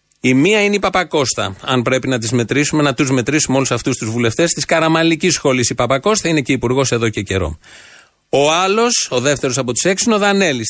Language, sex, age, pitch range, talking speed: Greek, male, 30-49, 125-170 Hz, 200 wpm